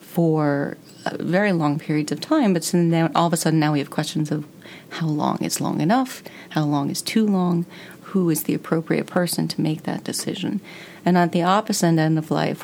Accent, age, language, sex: American, 40-59, English, female